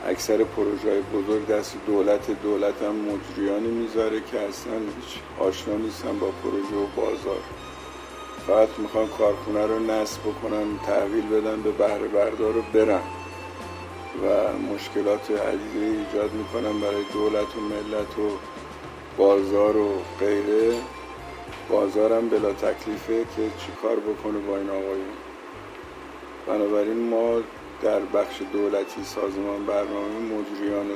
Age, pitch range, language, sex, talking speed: 50-69, 100-110 Hz, Persian, male, 115 wpm